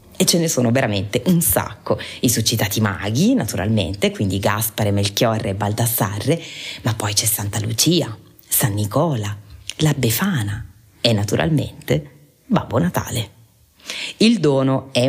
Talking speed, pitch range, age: 125 wpm, 110-155 Hz, 30-49